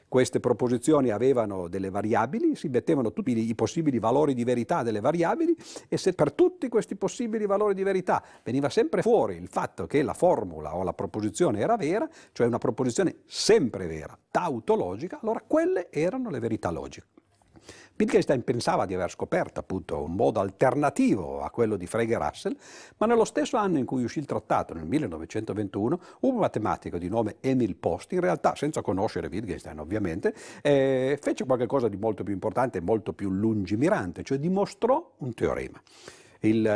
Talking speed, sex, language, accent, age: 170 wpm, male, Italian, native, 50-69